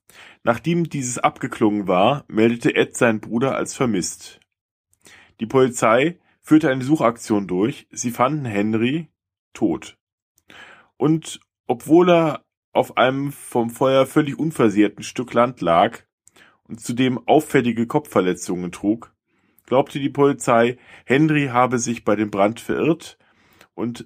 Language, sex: German, male